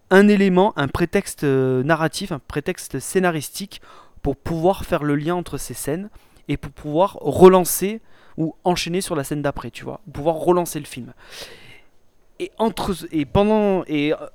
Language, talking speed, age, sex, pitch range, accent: French, 160 wpm, 20-39, male, 140-185 Hz, French